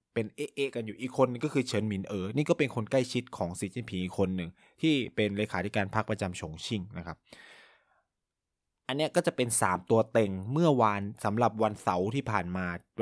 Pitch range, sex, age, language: 100-135 Hz, male, 20-39, Thai